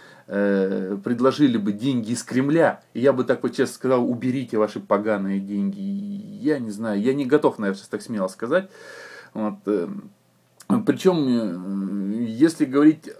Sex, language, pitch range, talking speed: male, Russian, 110-145 Hz, 135 wpm